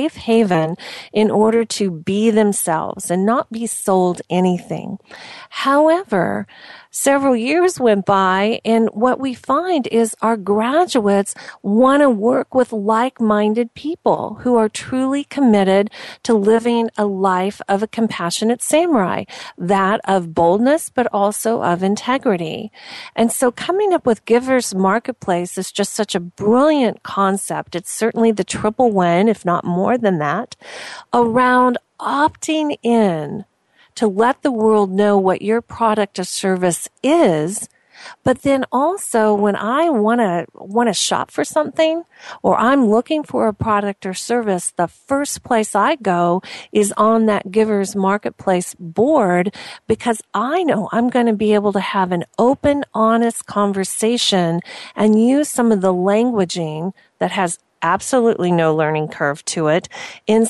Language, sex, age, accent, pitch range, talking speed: English, female, 40-59, American, 195-250 Hz, 145 wpm